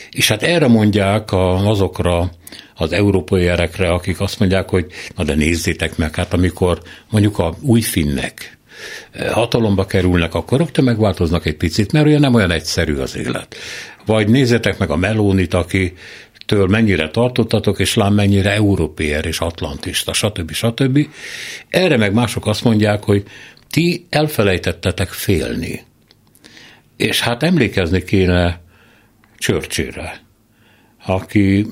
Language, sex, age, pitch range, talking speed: Hungarian, male, 60-79, 90-115 Hz, 125 wpm